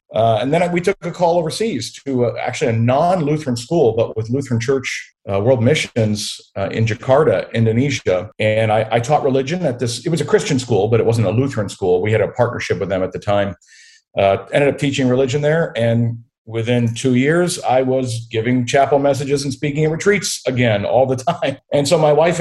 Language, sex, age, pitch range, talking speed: English, male, 50-69, 115-150 Hz, 210 wpm